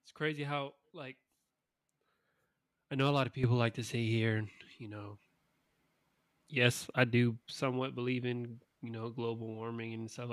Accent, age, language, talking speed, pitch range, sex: American, 20-39, English, 165 wpm, 110-130 Hz, male